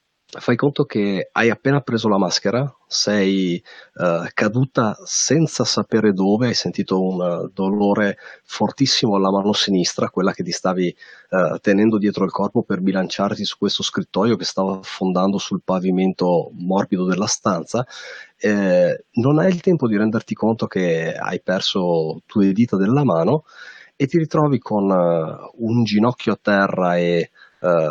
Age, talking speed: 30-49, 155 wpm